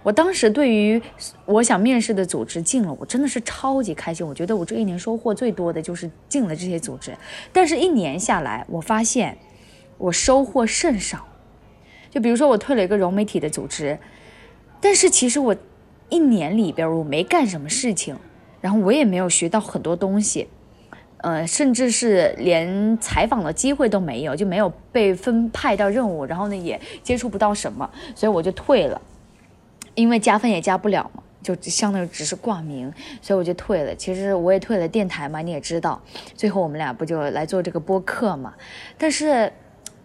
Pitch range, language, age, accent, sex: 170-235 Hz, Chinese, 20-39, native, female